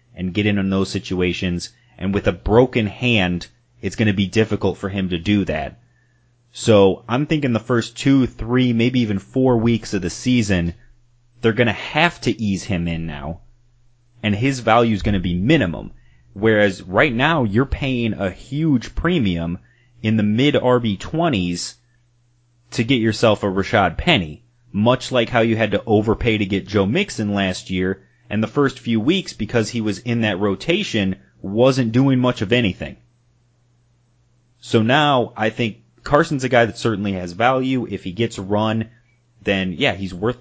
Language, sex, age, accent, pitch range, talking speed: English, male, 30-49, American, 100-120 Hz, 175 wpm